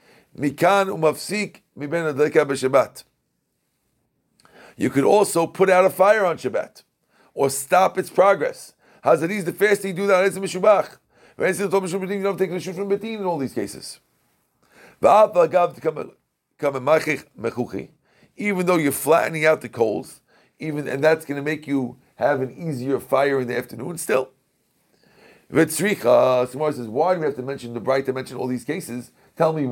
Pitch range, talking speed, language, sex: 135-185 Hz, 145 wpm, English, male